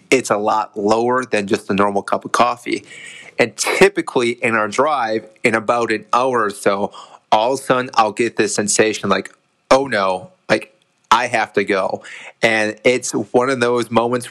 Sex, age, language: male, 30-49, English